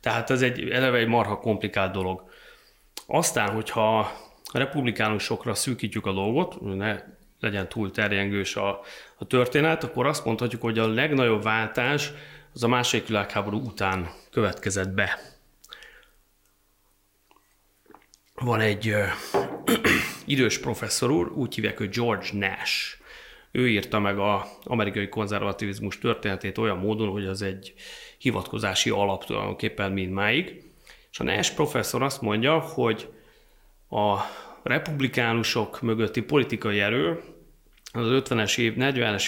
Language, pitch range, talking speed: Hungarian, 100-120 Hz, 125 wpm